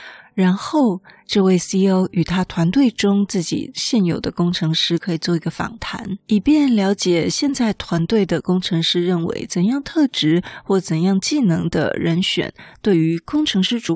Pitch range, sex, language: 165-210 Hz, female, Chinese